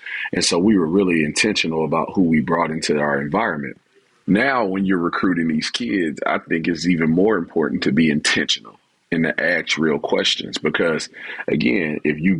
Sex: male